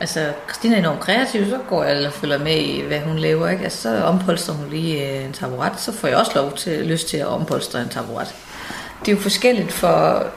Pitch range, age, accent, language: 155-195 Hz, 30-49, native, Danish